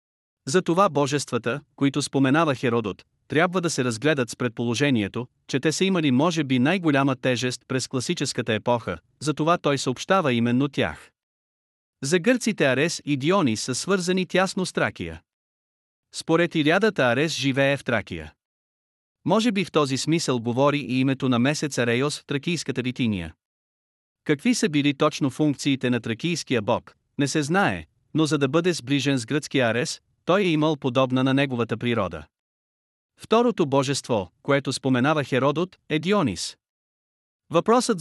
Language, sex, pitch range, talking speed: Bulgarian, male, 125-160 Hz, 145 wpm